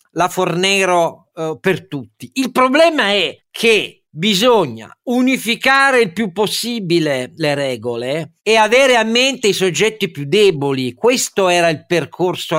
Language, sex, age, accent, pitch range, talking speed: Italian, male, 50-69, native, 130-190 Hz, 130 wpm